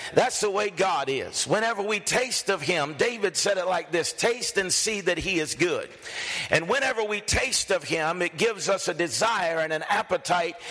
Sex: male